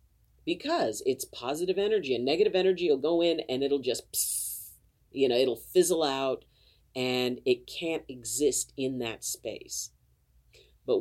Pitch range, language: 120-180 Hz, English